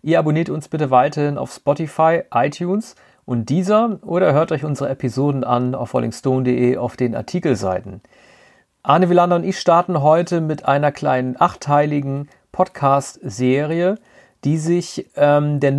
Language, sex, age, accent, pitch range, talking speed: German, male, 40-59, German, 135-175 Hz, 135 wpm